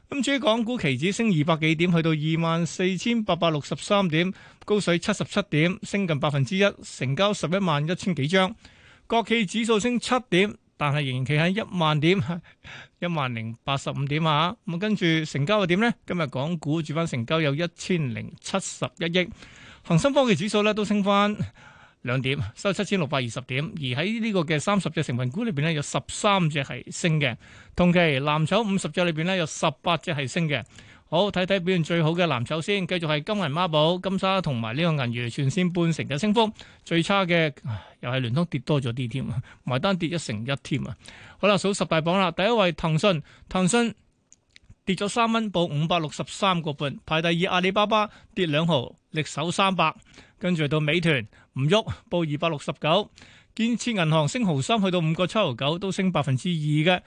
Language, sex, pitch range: Chinese, male, 150-195 Hz